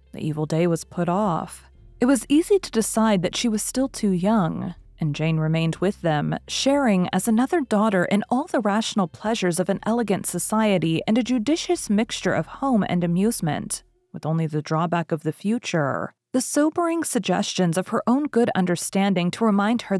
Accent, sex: American, female